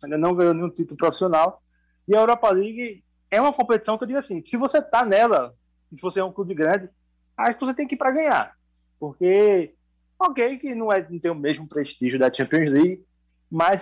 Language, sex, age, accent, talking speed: Portuguese, male, 20-39, Brazilian, 215 wpm